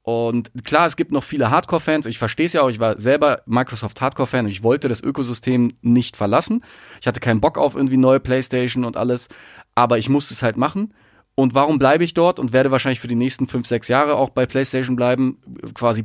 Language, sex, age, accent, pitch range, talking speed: German, male, 30-49, German, 105-130 Hz, 215 wpm